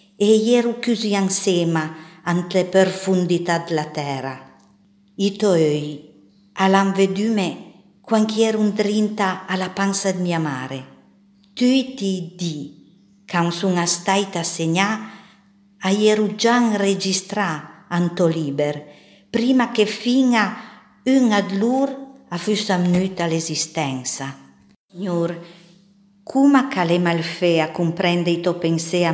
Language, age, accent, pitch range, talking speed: Italian, 50-69, native, 165-205 Hz, 105 wpm